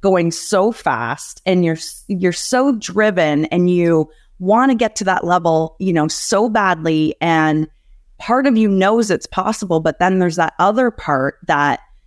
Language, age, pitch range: English, 20-39, 160-195 Hz